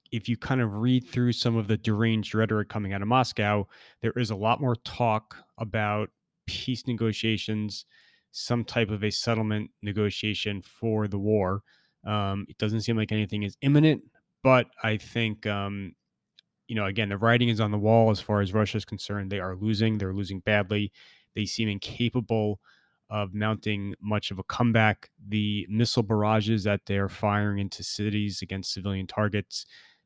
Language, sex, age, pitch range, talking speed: English, male, 20-39, 100-115 Hz, 170 wpm